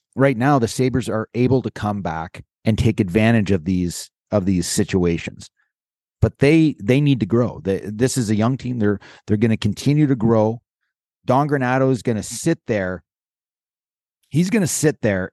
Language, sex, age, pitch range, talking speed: English, male, 30-49, 105-130 Hz, 185 wpm